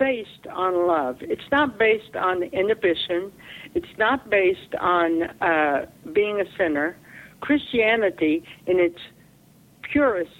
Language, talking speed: English, 115 wpm